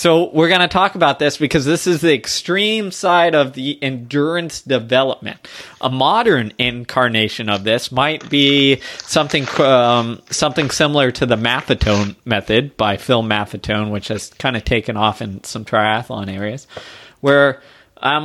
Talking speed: 155 wpm